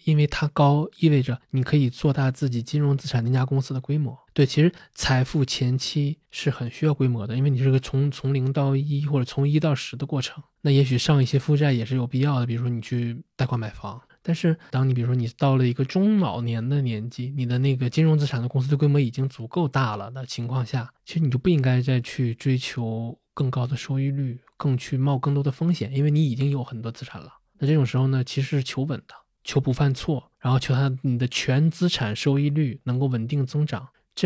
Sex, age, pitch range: male, 20-39, 125-145 Hz